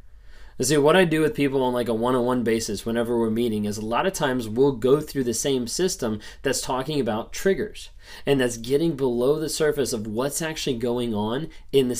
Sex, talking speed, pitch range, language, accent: male, 210 wpm, 115-145 Hz, English, American